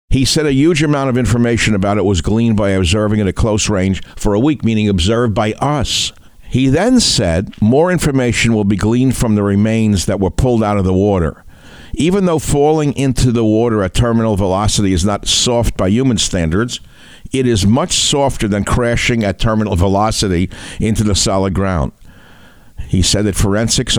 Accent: American